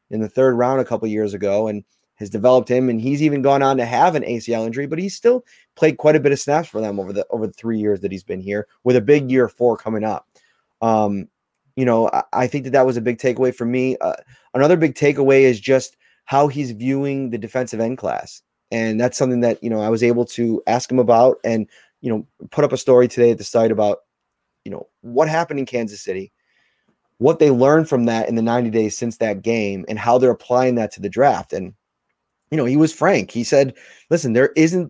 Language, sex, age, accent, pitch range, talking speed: English, male, 30-49, American, 115-140 Hz, 240 wpm